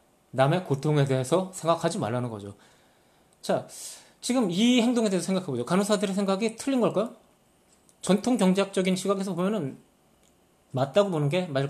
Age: 20-39